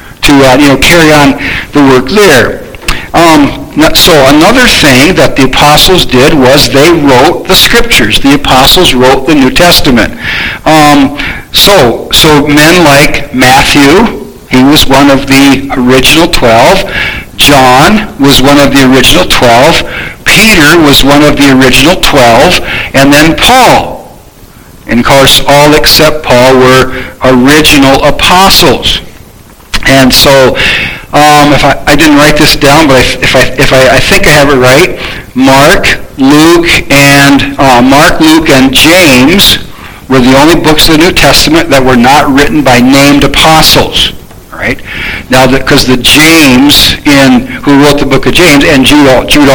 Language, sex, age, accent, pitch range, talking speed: English, male, 60-79, American, 130-150 Hz, 155 wpm